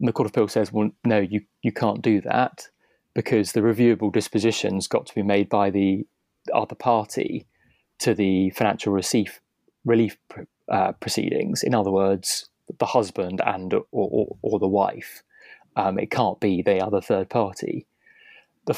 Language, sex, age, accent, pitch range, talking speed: English, male, 20-39, British, 100-120 Hz, 175 wpm